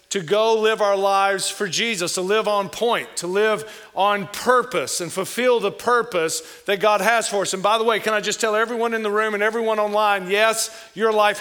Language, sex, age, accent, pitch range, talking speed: English, male, 40-59, American, 195-225 Hz, 220 wpm